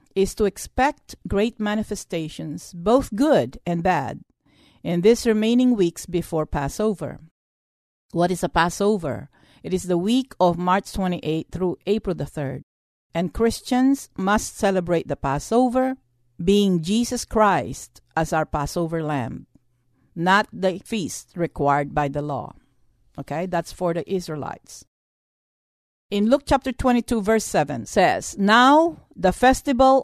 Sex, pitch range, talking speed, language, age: female, 155-220 Hz, 130 wpm, English, 50-69